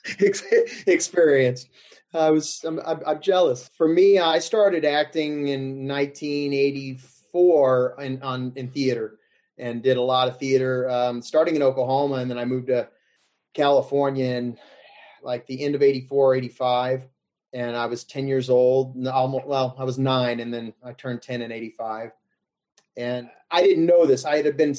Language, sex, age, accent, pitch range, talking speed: English, male, 30-49, American, 125-140 Hz, 160 wpm